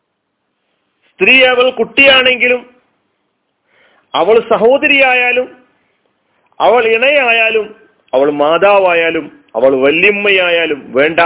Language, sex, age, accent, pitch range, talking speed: Malayalam, male, 40-59, native, 150-200 Hz, 65 wpm